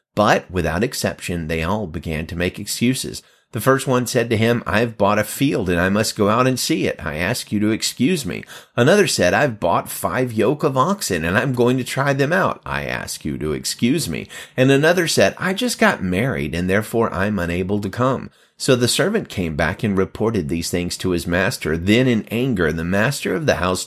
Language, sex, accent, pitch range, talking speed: English, male, American, 90-125 Hz, 220 wpm